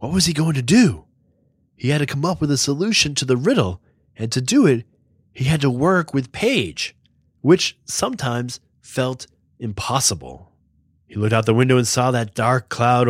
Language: English